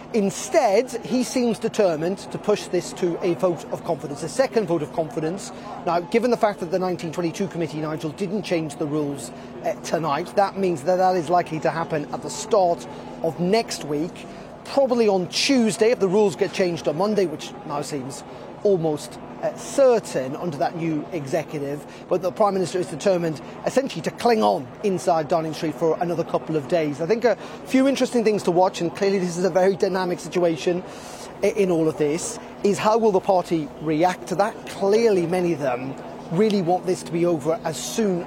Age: 30-49